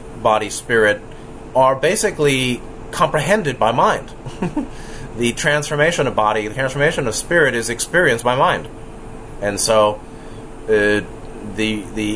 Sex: male